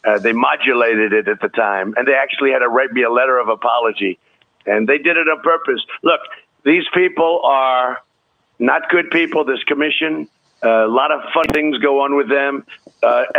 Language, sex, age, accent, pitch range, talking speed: English, male, 50-69, American, 115-160 Hz, 195 wpm